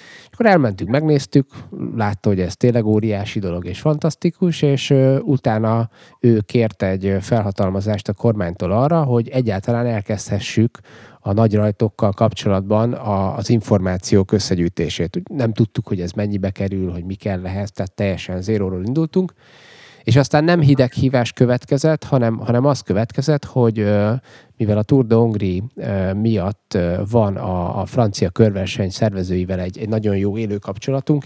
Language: Hungarian